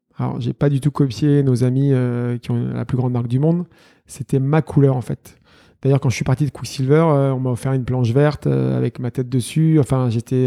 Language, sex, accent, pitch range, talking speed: French, male, French, 125-145 Hz, 250 wpm